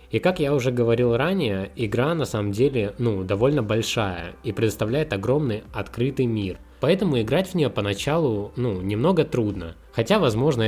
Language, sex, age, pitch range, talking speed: Russian, male, 20-39, 100-130 Hz, 155 wpm